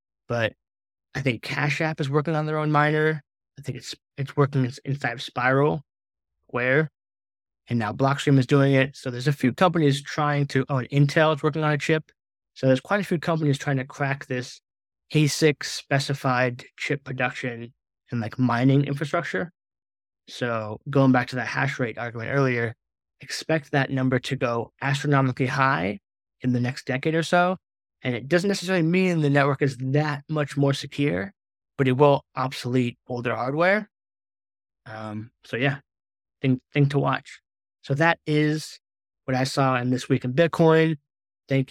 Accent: American